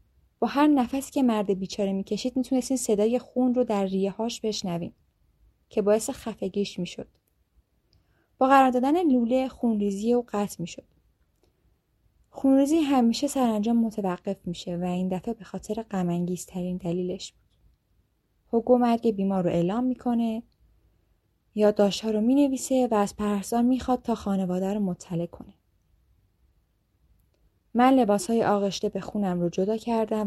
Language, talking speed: Persian, 135 wpm